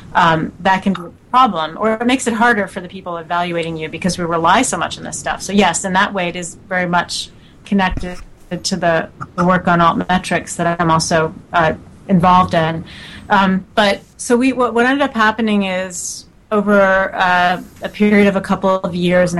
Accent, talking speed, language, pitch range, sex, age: American, 205 wpm, English, 170-190 Hz, female, 30-49